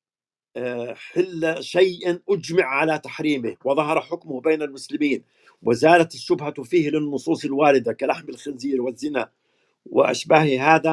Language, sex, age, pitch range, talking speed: Arabic, male, 50-69, 140-170 Hz, 105 wpm